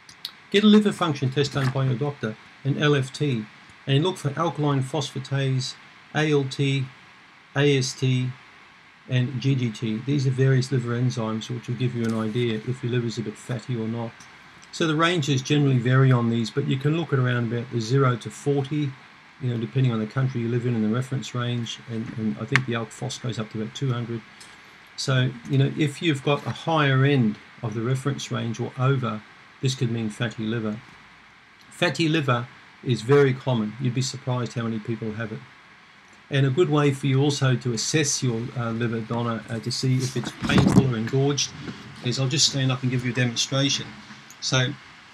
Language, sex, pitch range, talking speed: English, male, 115-140 Hz, 195 wpm